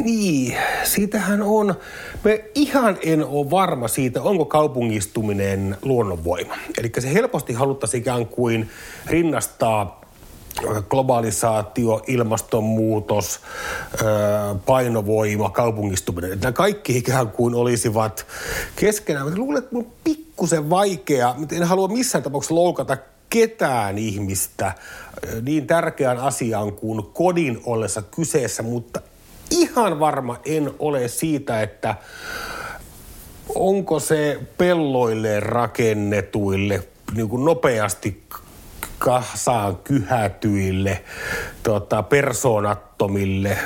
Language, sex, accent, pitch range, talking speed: Finnish, male, native, 105-155 Hz, 90 wpm